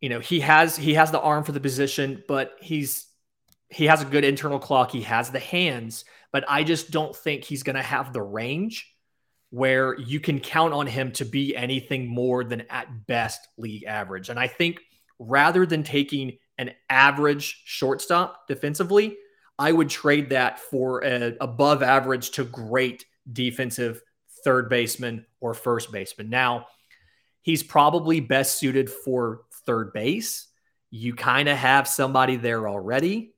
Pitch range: 120-150 Hz